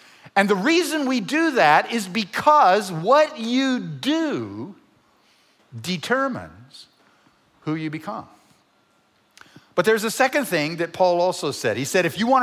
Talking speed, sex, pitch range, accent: 140 wpm, male, 185-260 Hz, American